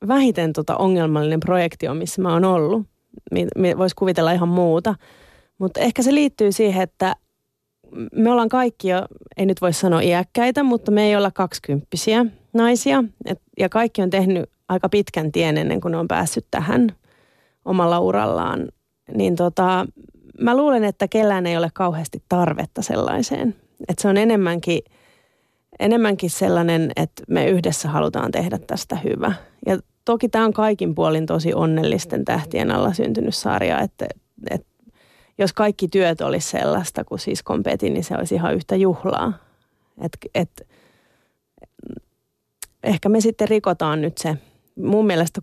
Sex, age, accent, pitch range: female, 30-49, native, 170-210 Hz